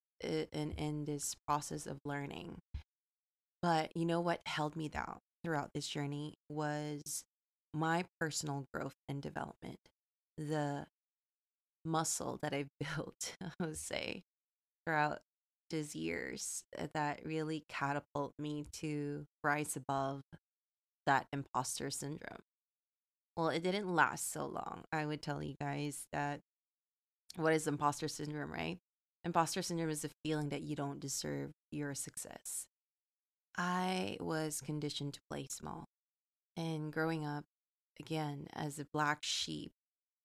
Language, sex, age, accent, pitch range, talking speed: English, female, 20-39, American, 140-160 Hz, 130 wpm